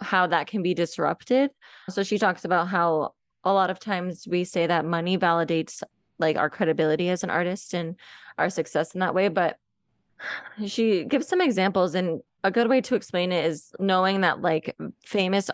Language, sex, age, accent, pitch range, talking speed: English, female, 20-39, American, 165-200 Hz, 185 wpm